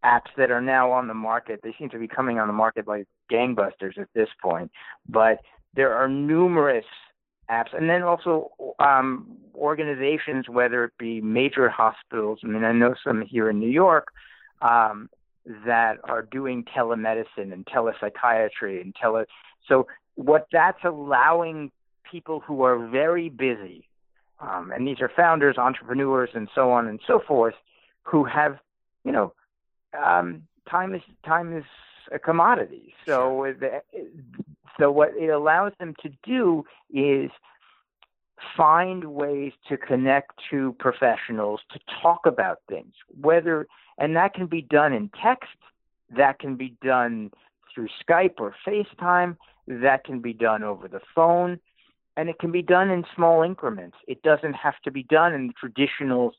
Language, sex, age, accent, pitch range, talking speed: English, male, 50-69, American, 115-160 Hz, 155 wpm